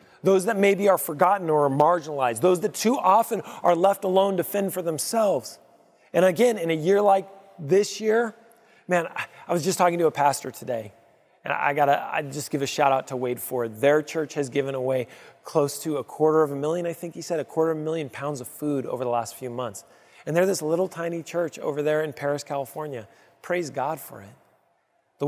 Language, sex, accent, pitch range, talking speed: English, male, American, 125-170 Hz, 220 wpm